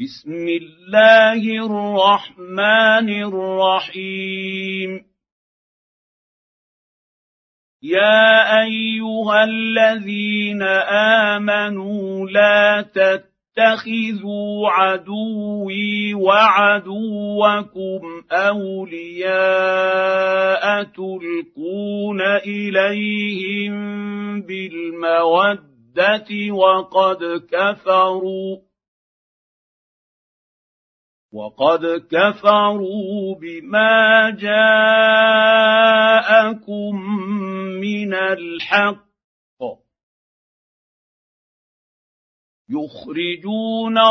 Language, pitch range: Arabic, 190-215 Hz